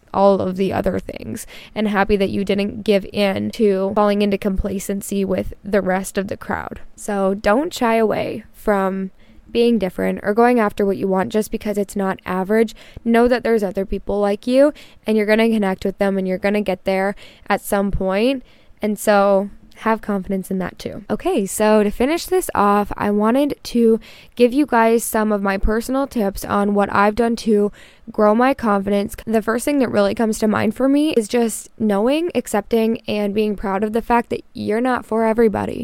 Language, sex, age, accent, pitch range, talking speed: English, female, 10-29, American, 200-235 Hz, 205 wpm